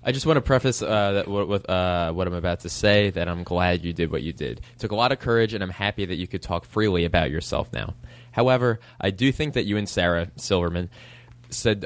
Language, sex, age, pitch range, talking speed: English, male, 20-39, 90-115 Hz, 255 wpm